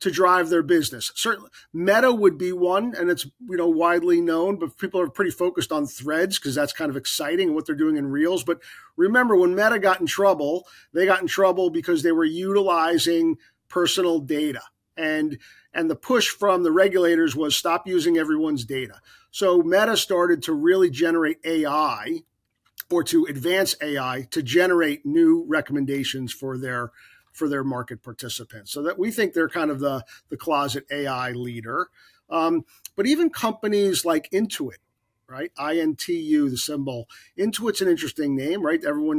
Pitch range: 150-195 Hz